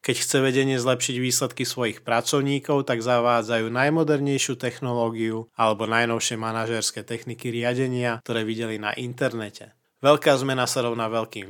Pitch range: 115-140 Hz